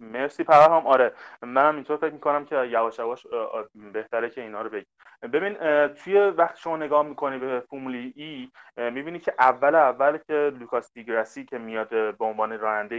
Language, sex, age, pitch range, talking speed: Persian, male, 30-49, 115-165 Hz, 165 wpm